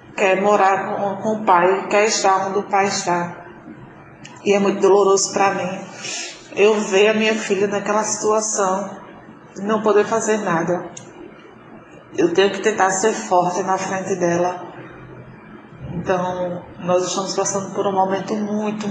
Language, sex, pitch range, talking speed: Portuguese, female, 180-200 Hz, 150 wpm